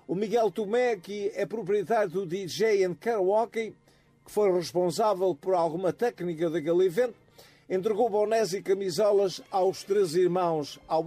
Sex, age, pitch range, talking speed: male, 50-69, 160-210 Hz, 140 wpm